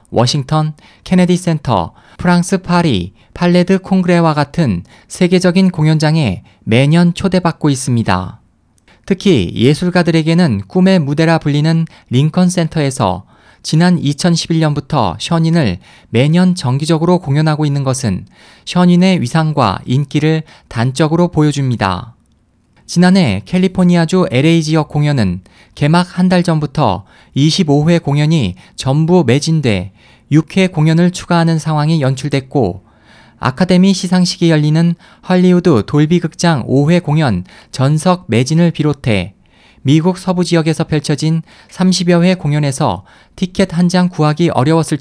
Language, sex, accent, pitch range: Korean, male, native, 130-175 Hz